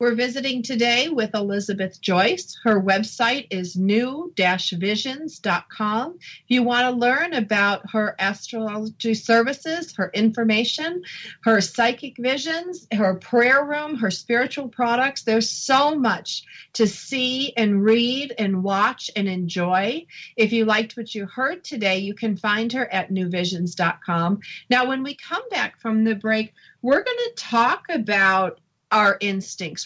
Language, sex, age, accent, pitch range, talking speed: English, female, 40-59, American, 205-255 Hz, 140 wpm